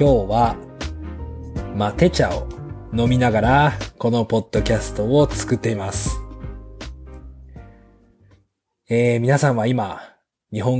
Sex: male